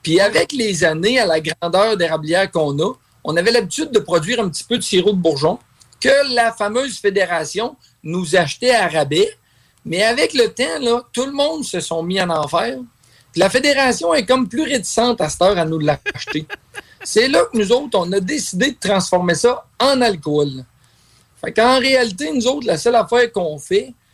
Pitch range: 170-245 Hz